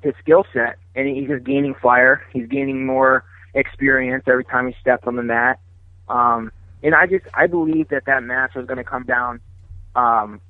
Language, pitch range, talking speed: English, 120-145 Hz, 195 wpm